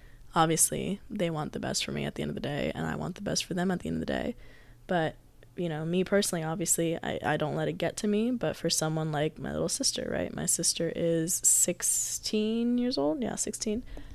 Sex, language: female, English